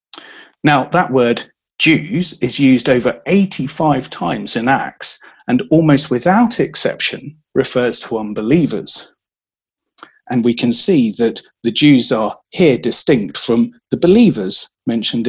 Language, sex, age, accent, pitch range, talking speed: English, male, 40-59, British, 120-170 Hz, 125 wpm